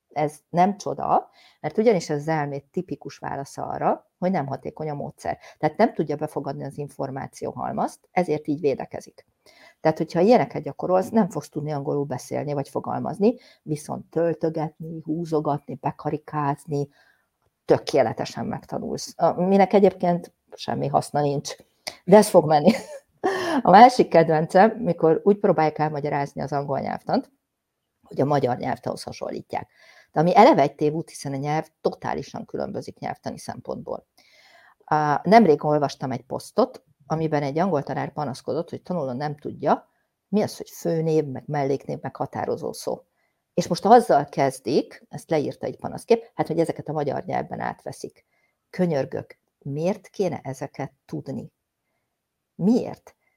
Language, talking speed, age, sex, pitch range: Hungarian, 135 wpm, 50-69, female, 145-180 Hz